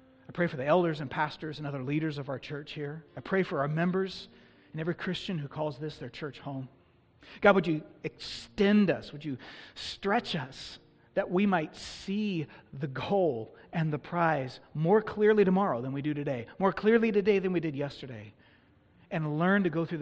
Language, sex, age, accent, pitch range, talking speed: English, male, 40-59, American, 140-175 Hz, 195 wpm